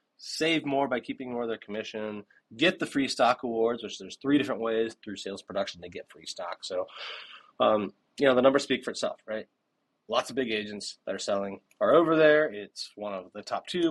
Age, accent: 20-39, American